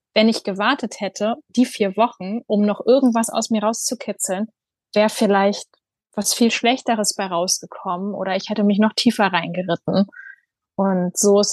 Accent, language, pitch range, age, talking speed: German, German, 190-235 Hz, 20-39, 155 wpm